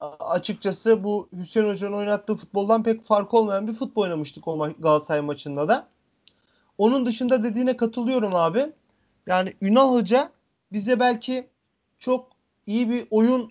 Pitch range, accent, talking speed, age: 205-255 Hz, native, 130 wpm, 40-59